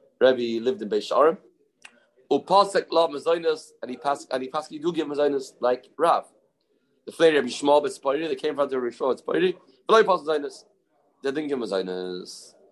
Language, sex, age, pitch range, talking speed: English, male, 30-49, 135-215 Hz, 180 wpm